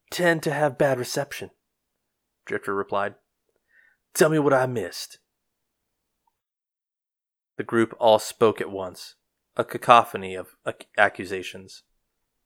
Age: 30-49